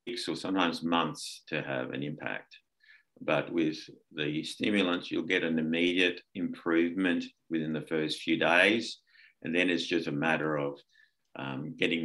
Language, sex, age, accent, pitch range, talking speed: English, male, 50-69, Australian, 75-95 Hz, 150 wpm